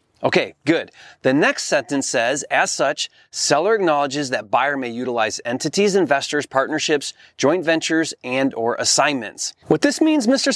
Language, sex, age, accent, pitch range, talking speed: English, male, 30-49, American, 135-205 Hz, 150 wpm